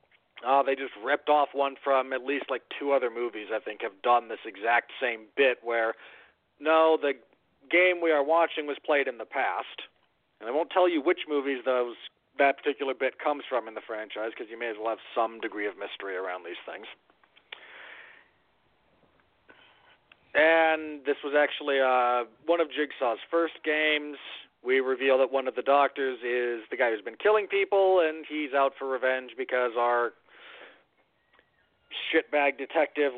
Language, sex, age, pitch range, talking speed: English, male, 40-59, 125-160 Hz, 170 wpm